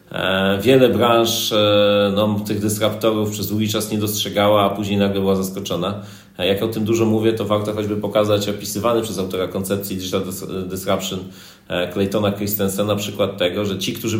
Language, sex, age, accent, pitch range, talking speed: Polish, male, 30-49, native, 95-110 Hz, 160 wpm